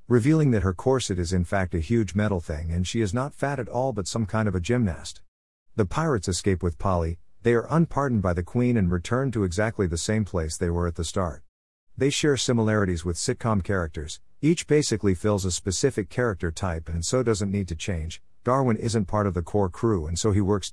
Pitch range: 85-115 Hz